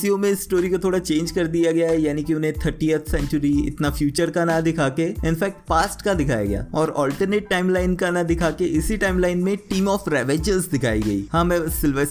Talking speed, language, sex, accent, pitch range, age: 115 wpm, Hindi, male, native, 150-185 Hz, 20-39